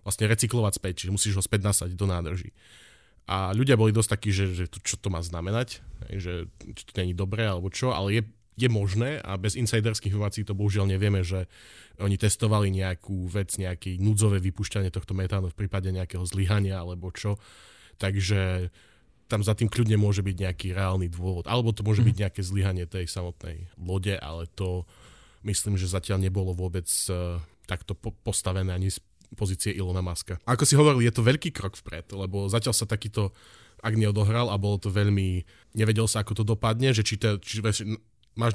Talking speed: 180 wpm